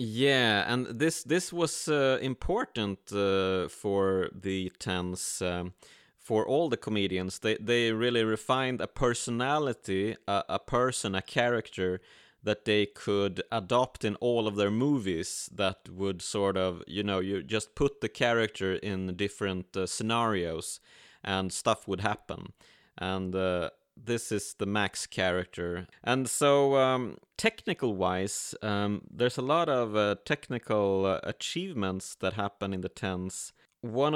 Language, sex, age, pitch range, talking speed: English, male, 30-49, 100-125 Hz, 140 wpm